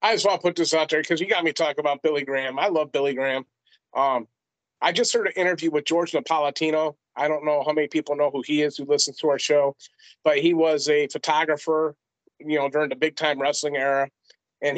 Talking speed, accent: 235 wpm, American